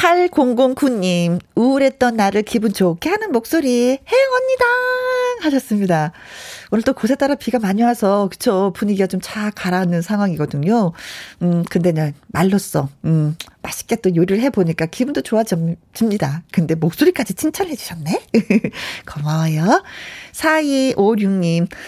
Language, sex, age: Korean, female, 40-59